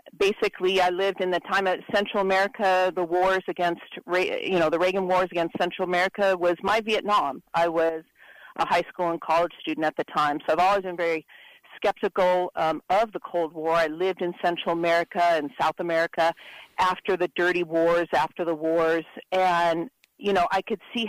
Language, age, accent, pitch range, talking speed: English, 40-59, American, 170-200 Hz, 190 wpm